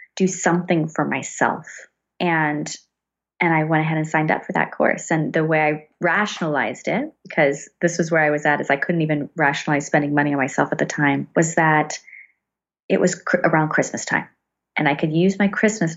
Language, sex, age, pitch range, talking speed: English, female, 30-49, 155-200 Hz, 205 wpm